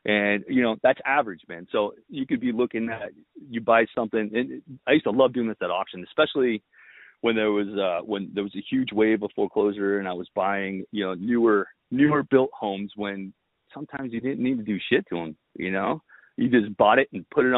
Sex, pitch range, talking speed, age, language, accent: male, 95-130 Hz, 225 wpm, 30-49, English, American